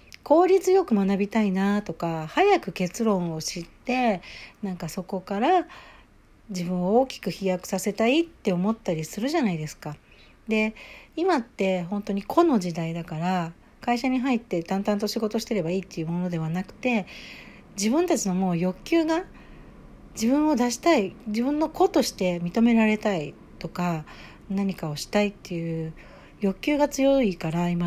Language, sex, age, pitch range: Japanese, female, 60-79, 170-250 Hz